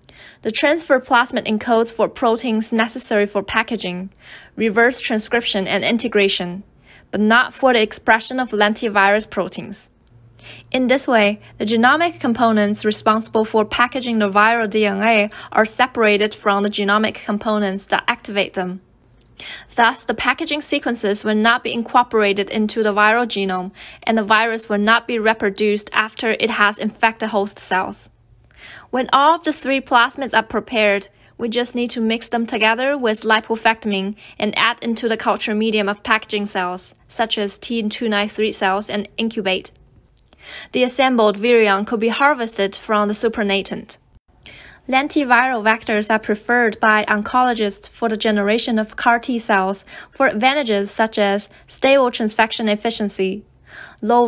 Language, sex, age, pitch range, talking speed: English, female, 20-39, 205-235 Hz, 145 wpm